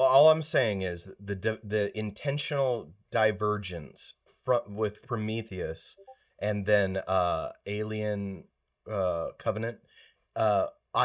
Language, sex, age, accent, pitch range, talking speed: English, male, 30-49, American, 95-110 Hz, 100 wpm